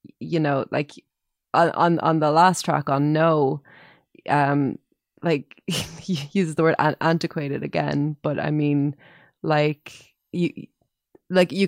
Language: English